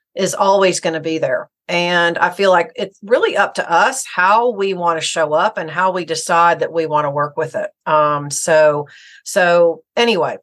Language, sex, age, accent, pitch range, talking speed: English, female, 40-59, American, 170-215 Hz, 205 wpm